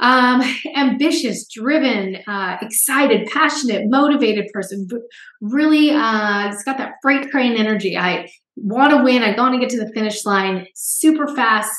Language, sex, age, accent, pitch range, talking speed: English, female, 20-39, American, 195-245 Hz, 165 wpm